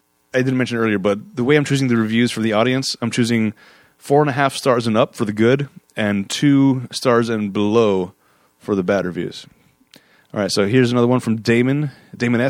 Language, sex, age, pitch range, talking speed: English, male, 30-49, 110-140 Hz, 210 wpm